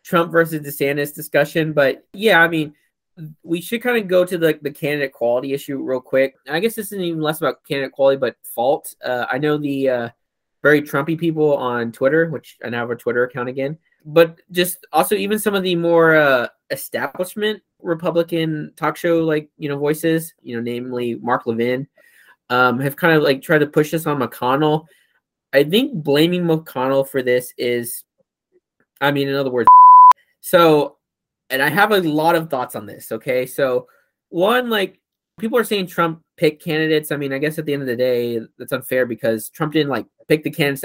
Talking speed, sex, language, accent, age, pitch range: 195 wpm, male, English, American, 20-39, 130-170 Hz